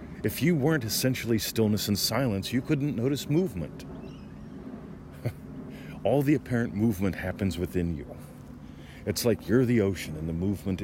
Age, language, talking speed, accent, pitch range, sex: 40-59, English, 145 wpm, American, 80-105 Hz, male